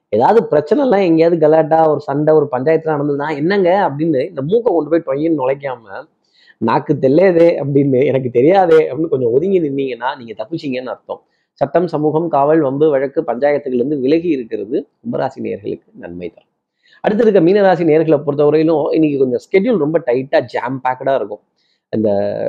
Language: Tamil